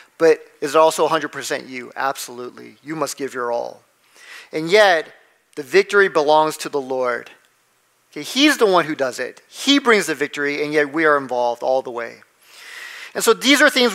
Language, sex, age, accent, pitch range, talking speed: English, male, 40-59, American, 160-220 Hz, 185 wpm